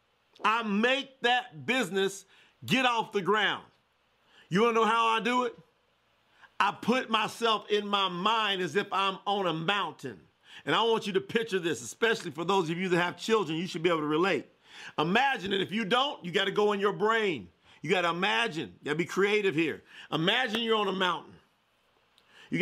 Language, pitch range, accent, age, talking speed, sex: English, 195-235 Hz, American, 50-69, 200 wpm, male